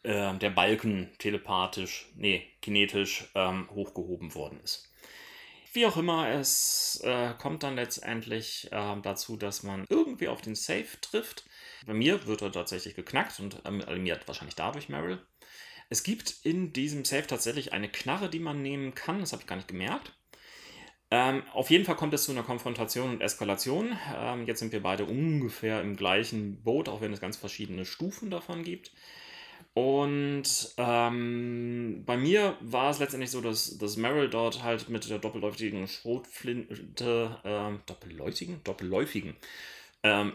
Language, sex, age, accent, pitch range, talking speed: German, male, 30-49, German, 105-140 Hz, 155 wpm